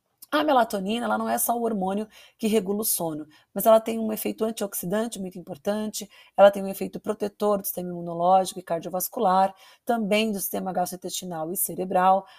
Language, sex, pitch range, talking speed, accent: Portuguese, female, 185-235 Hz, 175 wpm, Brazilian